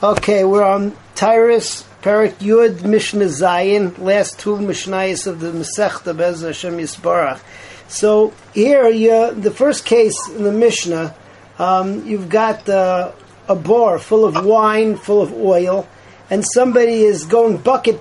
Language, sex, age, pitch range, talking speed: English, male, 40-59, 200-235 Hz, 135 wpm